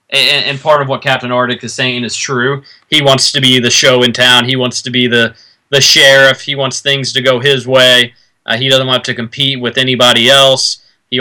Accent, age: American, 20-39